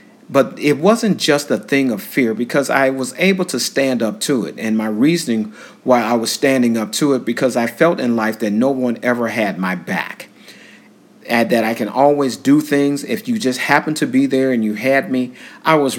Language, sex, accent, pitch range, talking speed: English, male, American, 110-140 Hz, 220 wpm